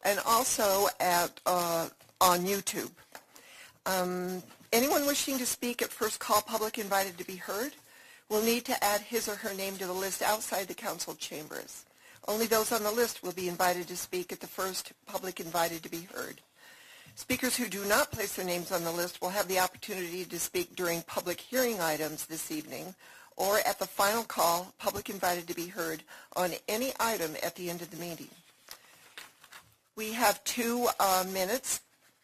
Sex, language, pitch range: female, English, 180-220 Hz